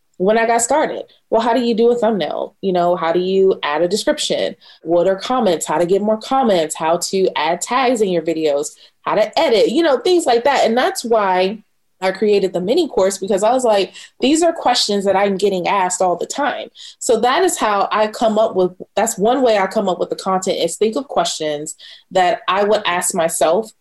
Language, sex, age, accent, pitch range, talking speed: English, female, 20-39, American, 180-230 Hz, 225 wpm